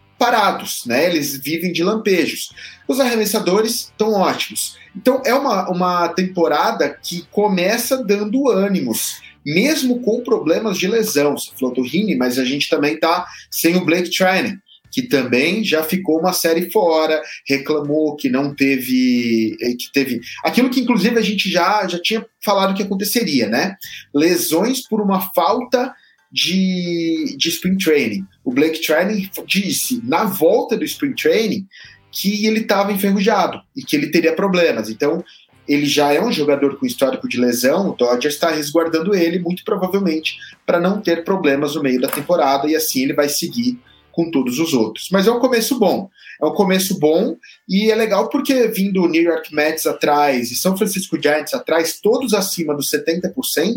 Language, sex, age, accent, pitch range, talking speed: English, male, 30-49, Brazilian, 150-215 Hz, 165 wpm